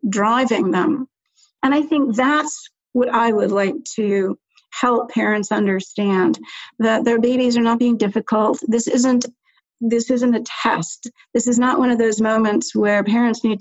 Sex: female